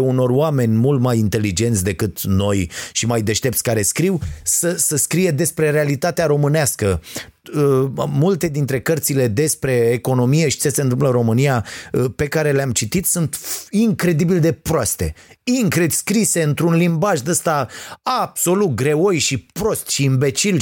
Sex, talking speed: male, 140 wpm